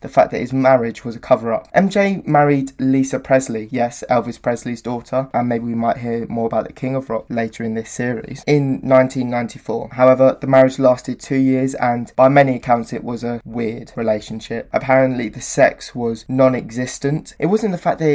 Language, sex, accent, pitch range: English, male, British, 120-140 Hz